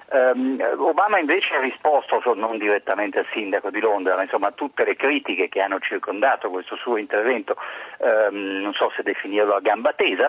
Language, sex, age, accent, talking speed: Italian, male, 50-69, native, 170 wpm